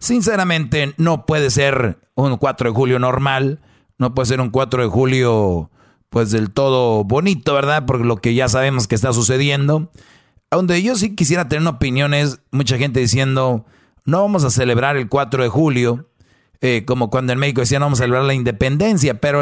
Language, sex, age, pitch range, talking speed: Spanish, male, 40-59, 125-150 Hz, 180 wpm